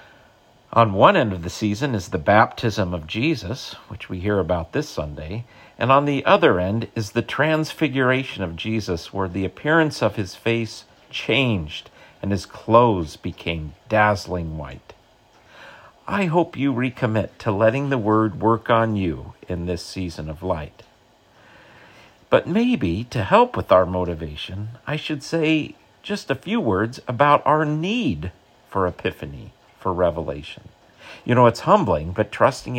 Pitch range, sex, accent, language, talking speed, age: 95-120 Hz, male, American, English, 150 wpm, 50-69